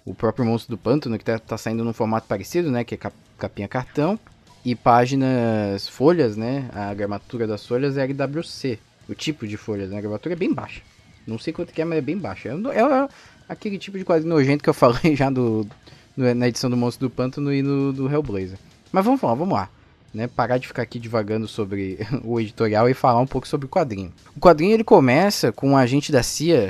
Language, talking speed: Portuguese, 225 wpm